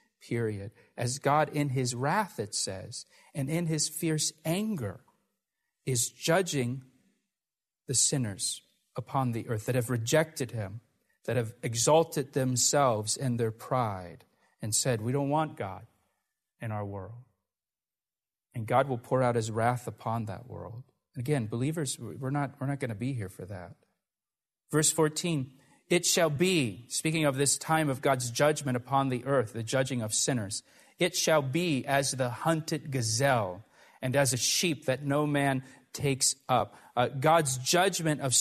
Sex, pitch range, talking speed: male, 125-150 Hz, 165 wpm